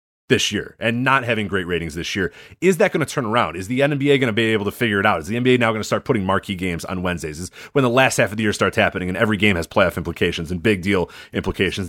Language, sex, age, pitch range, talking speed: English, male, 30-49, 105-145 Hz, 295 wpm